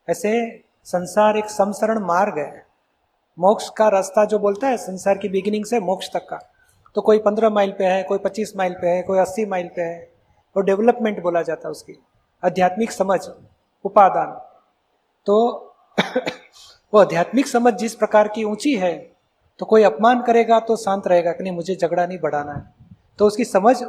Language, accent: Hindi, native